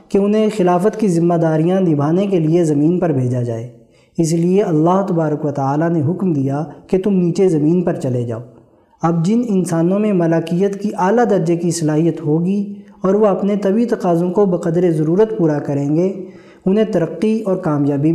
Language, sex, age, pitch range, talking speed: Urdu, male, 20-39, 155-195 Hz, 180 wpm